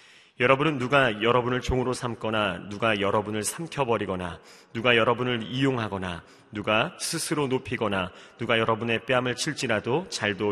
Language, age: Korean, 30-49